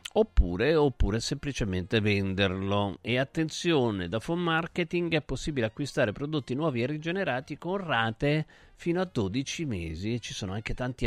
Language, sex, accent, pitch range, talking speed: Italian, male, native, 115-160 Hz, 145 wpm